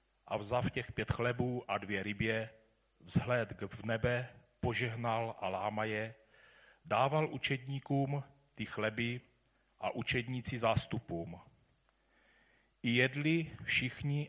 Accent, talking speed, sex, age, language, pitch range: native, 110 wpm, male, 40-59, Czech, 115-135 Hz